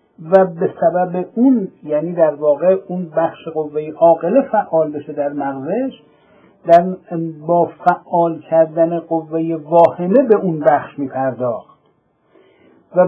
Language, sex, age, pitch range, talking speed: Persian, male, 60-79, 165-225 Hz, 120 wpm